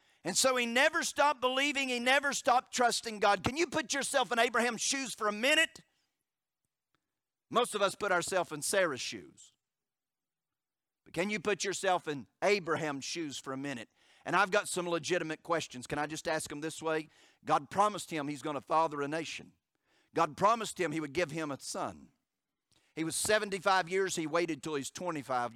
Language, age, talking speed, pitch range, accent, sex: English, 50-69, 190 wpm, 155-240 Hz, American, male